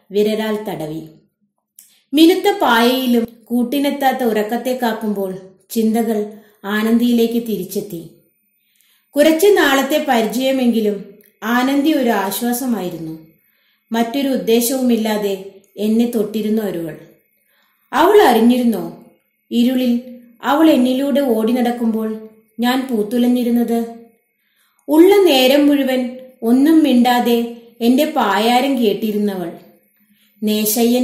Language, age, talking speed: Malayalam, 30-49, 75 wpm